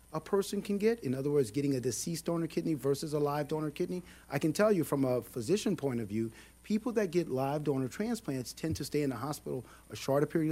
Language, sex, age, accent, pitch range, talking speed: English, male, 50-69, American, 110-145 Hz, 240 wpm